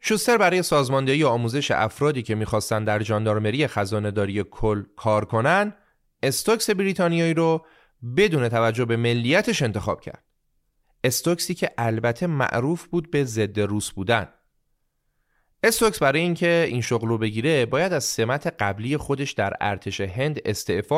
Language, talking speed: Persian, 135 wpm